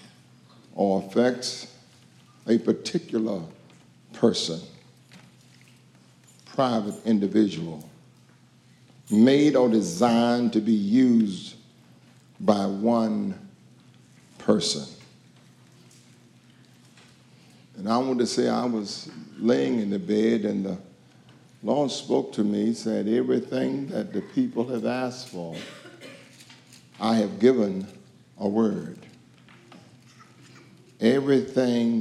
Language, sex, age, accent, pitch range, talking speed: English, male, 50-69, American, 110-125 Hz, 90 wpm